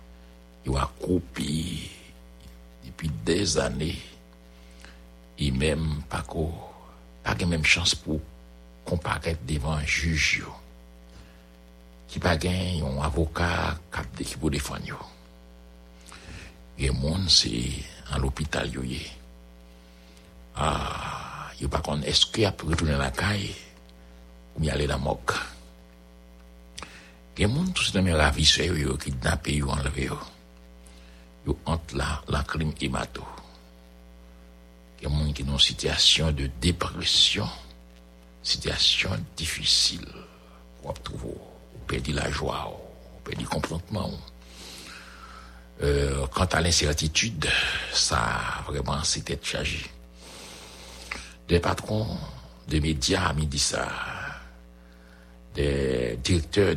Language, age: English, 60-79